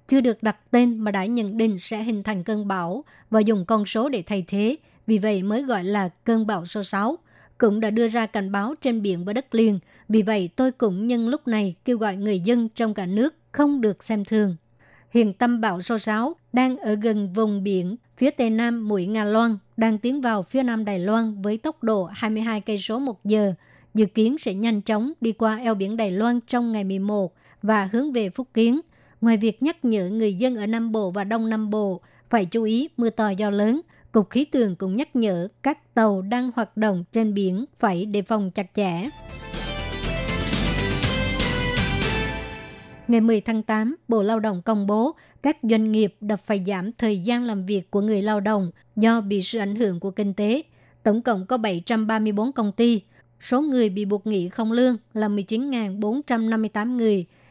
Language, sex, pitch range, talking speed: Vietnamese, male, 205-235 Hz, 200 wpm